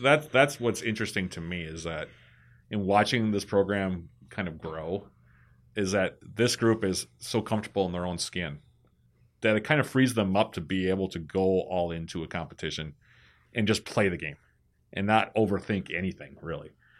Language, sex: English, male